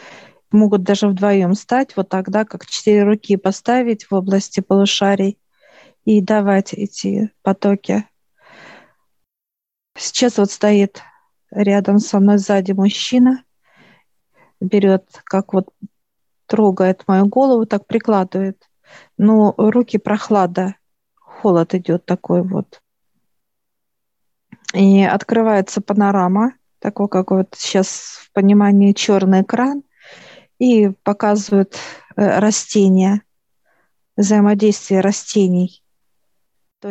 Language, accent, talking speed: Russian, native, 95 wpm